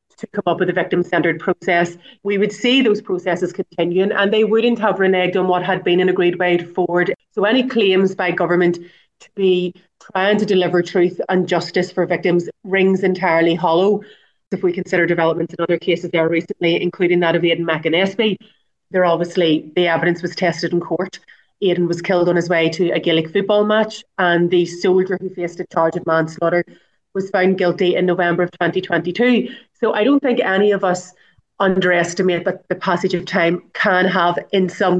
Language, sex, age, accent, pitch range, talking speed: English, female, 30-49, Irish, 175-200 Hz, 190 wpm